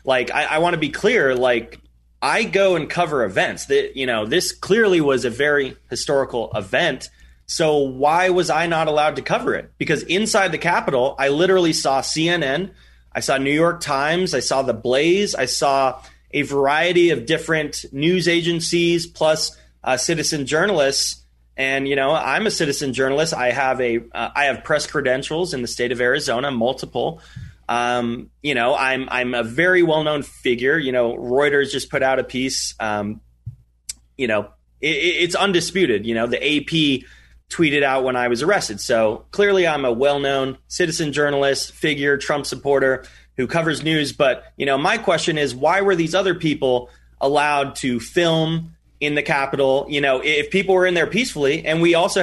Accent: American